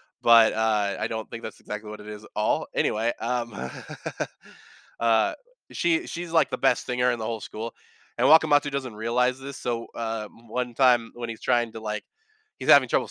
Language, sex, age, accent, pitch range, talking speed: English, male, 20-39, American, 110-140 Hz, 190 wpm